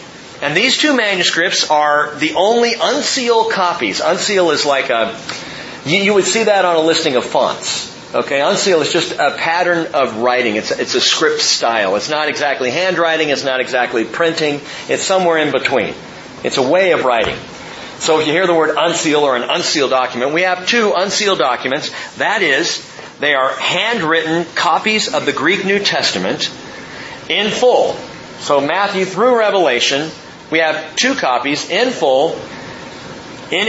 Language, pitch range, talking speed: English, 150-205 Hz, 165 wpm